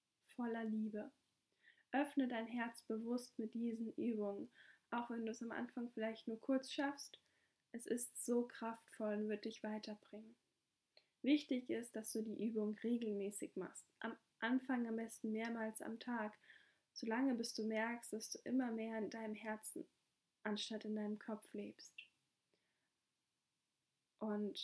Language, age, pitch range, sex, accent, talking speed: German, 10-29, 215-245 Hz, female, German, 145 wpm